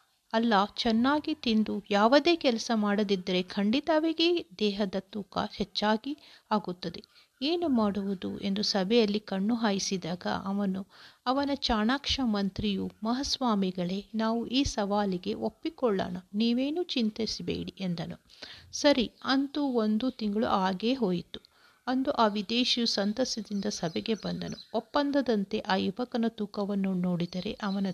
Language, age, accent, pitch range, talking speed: Kannada, 50-69, native, 200-245 Hz, 105 wpm